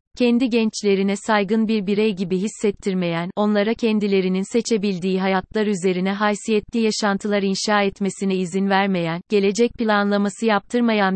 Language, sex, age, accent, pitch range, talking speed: Turkish, female, 30-49, native, 190-225 Hz, 115 wpm